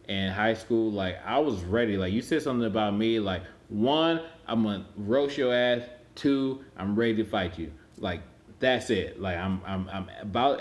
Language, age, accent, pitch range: English, 20-39, American, 100-115 Hz